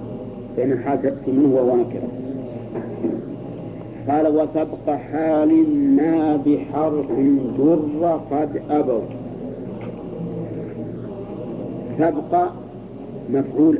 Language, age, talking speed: Arabic, 50-69, 65 wpm